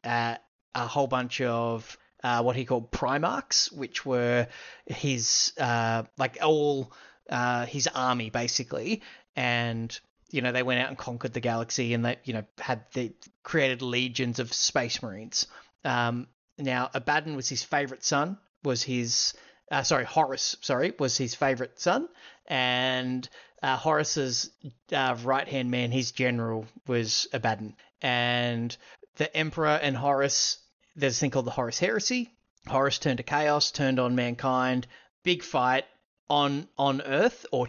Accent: Australian